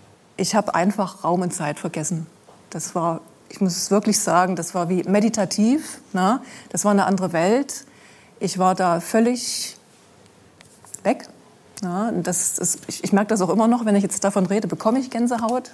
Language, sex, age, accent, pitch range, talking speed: German, female, 30-49, German, 190-235 Hz, 180 wpm